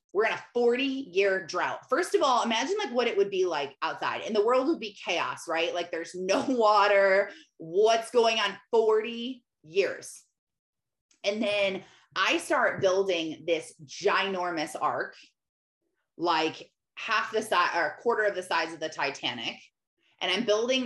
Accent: American